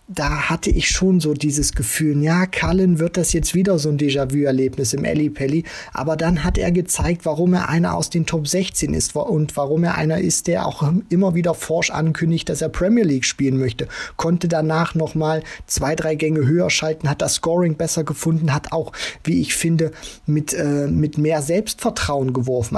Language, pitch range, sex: German, 135-165 Hz, male